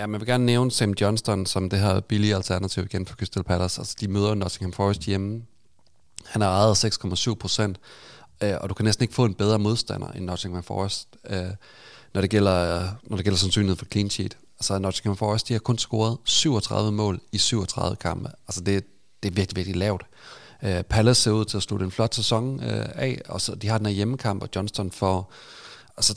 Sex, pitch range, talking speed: male, 95-110 Hz, 205 wpm